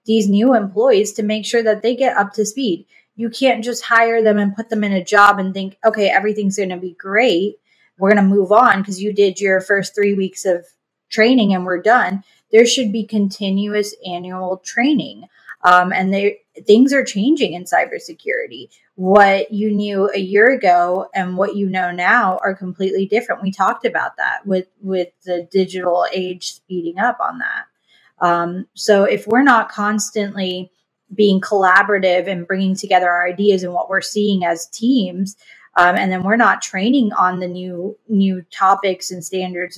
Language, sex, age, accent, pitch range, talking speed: English, female, 20-39, American, 185-220 Hz, 180 wpm